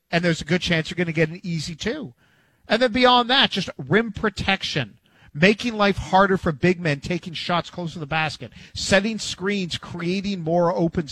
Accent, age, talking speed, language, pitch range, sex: American, 50-69, 195 wpm, English, 145-180 Hz, male